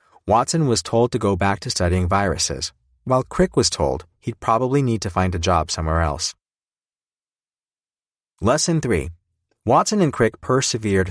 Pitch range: 85-120 Hz